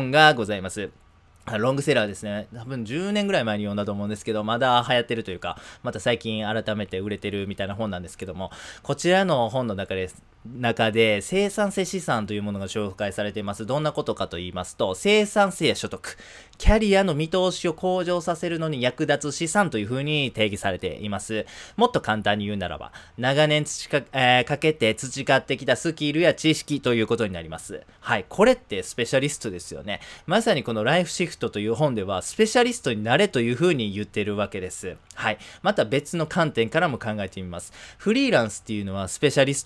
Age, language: 20-39, Japanese